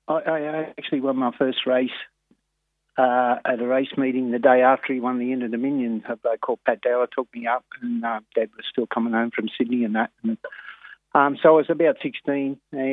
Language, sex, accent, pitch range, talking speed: English, male, Australian, 120-135 Hz, 205 wpm